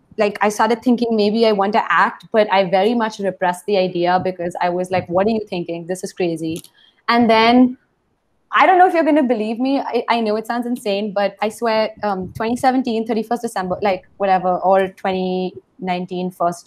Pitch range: 195-250 Hz